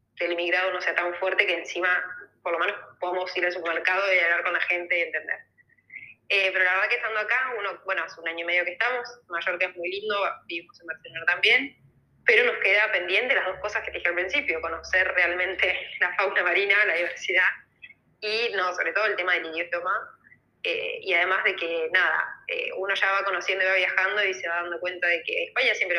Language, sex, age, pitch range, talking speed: Spanish, female, 20-39, 170-195 Hz, 220 wpm